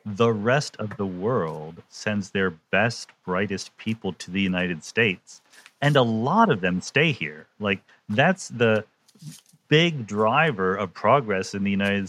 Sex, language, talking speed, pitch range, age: male, English, 155 wpm, 95-145 Hz, 40-59